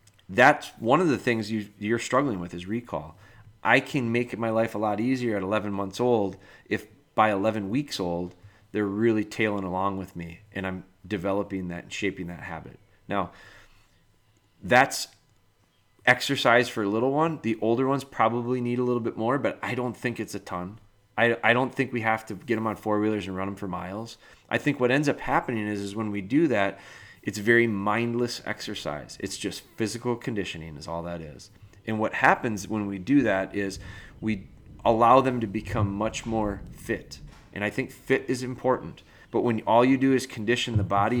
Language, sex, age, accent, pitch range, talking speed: English, male, 30-49, American, 100-120 Hz, 200 wpm